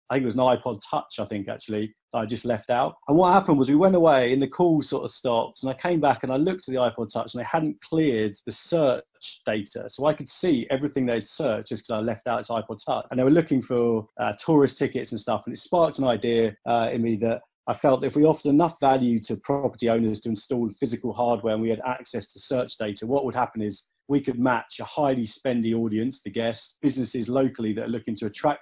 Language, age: English, 30-49